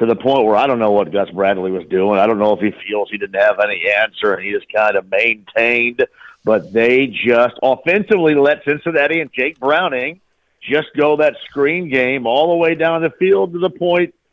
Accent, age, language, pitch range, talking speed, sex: American, 50-69, English, 120-180 Hz, 220 wpm, male